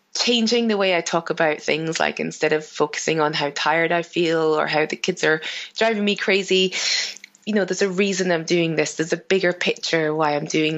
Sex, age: female, 20-39